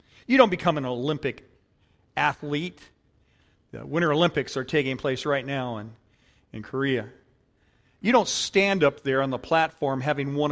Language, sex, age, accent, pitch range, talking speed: English, male, 50-69, American, 120-170 Hz, 155 wpm